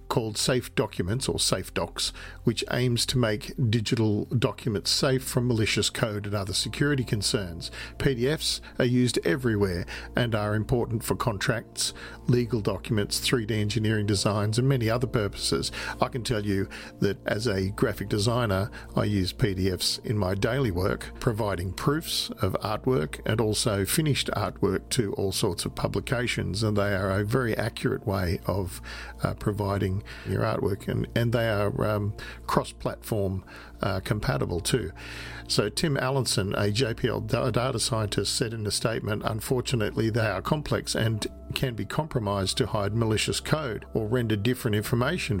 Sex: male